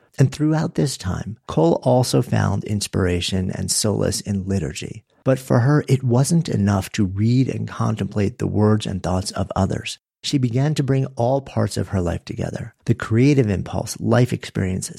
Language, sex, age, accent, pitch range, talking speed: English, male, 50-69, American, 100-130 Hz, 170 wpm